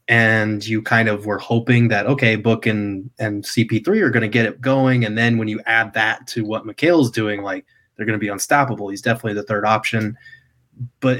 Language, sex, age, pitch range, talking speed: English, male, 20-39, 110-125 Hz, 215 wpm